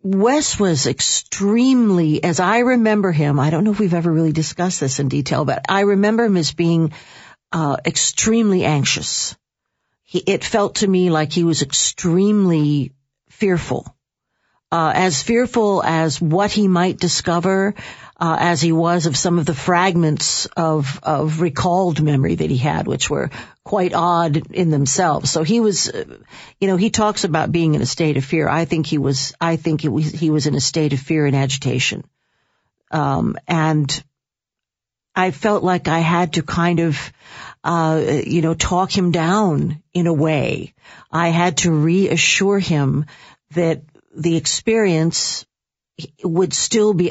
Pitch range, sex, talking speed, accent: 155-185 Hz, female, 165 wpm, American